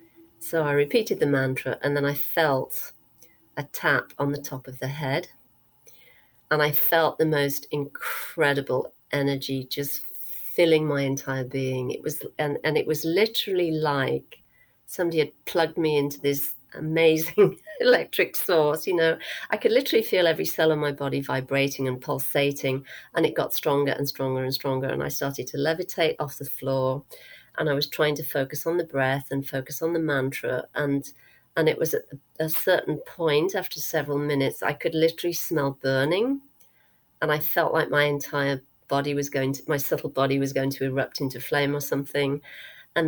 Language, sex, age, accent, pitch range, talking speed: English, female, 40-59, British, 135-160 Hz, 180 wpm